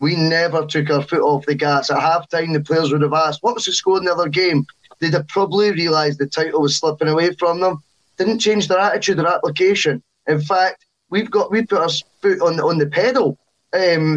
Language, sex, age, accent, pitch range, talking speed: English, male, 10-29, British, 140-165 Hz, 230 wpm